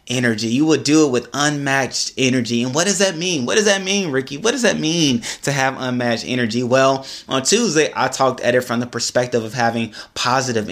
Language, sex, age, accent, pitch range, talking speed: English, male, 20-39, American, 115-145 Hz, 220 wpm